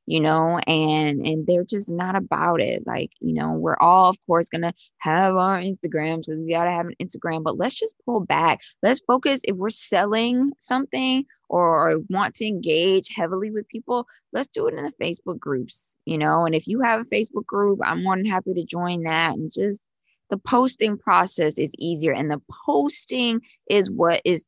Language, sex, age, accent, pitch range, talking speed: English, female, 20-39, American, 160-200 Hz, 200 wpm